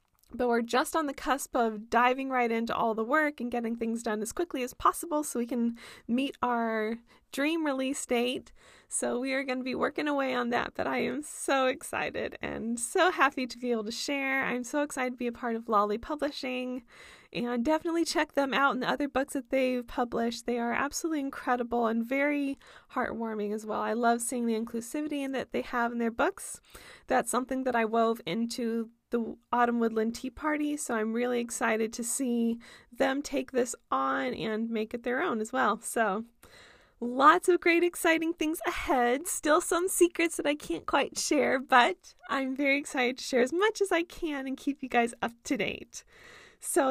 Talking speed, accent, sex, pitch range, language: 200 wpm, American, female, 235-295 Hz, English